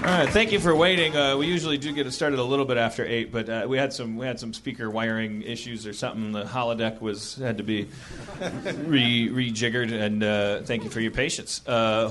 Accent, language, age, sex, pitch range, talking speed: American, English, 30-49, male, 115-150 Hz, 235 wpm